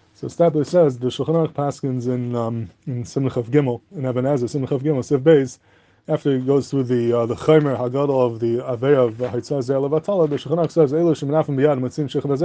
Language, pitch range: English, 130-155 Hz